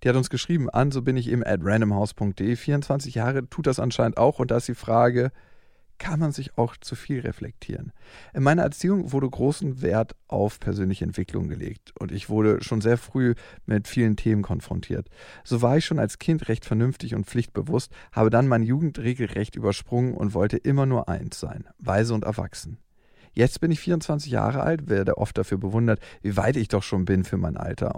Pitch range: 105-135 Hz